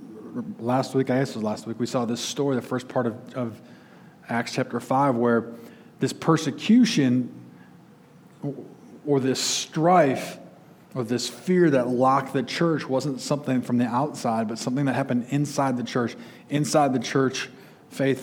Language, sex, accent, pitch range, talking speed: English, male, American, 120-140 Hz, 160 wpm